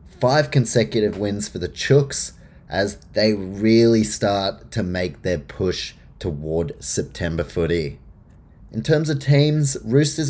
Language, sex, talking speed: English, male, 130 wpm